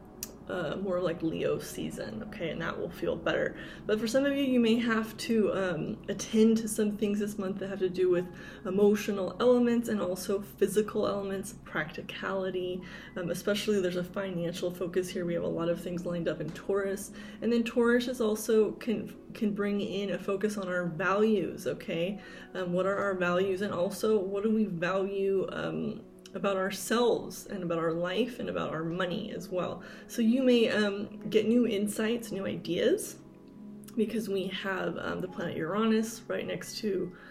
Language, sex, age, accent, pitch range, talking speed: English, female, 20-39, American, 185-220 Hz, 185 wpm